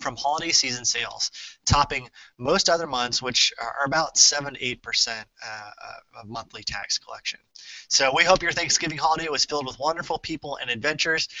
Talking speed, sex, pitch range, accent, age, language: 165 wpm, male, 120-150 Hz, American, 30-49, English